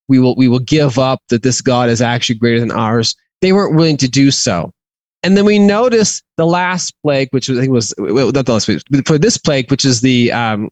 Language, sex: English, male